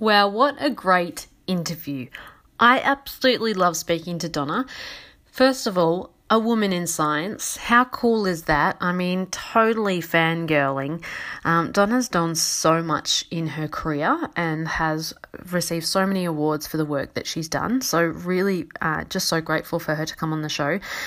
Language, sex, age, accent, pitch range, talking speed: English, female, 30-49, Australian, 160-200 Hz, 170 wpm